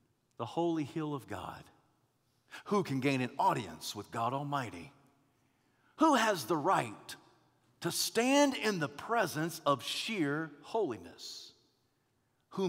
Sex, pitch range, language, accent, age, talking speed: male, 135-200 Hz, English, American, 50-69, 125 wpm